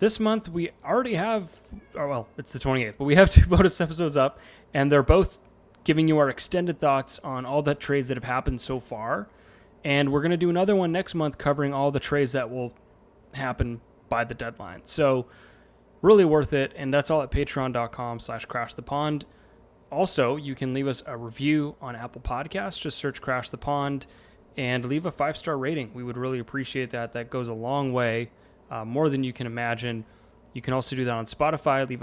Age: 20-39